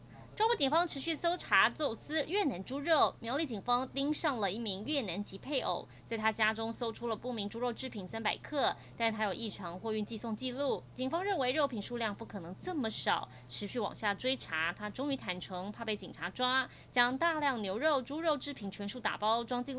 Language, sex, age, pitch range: Chinese, female, 20-39, 210-275 Hz